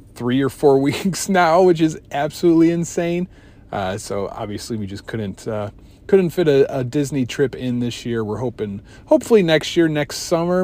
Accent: American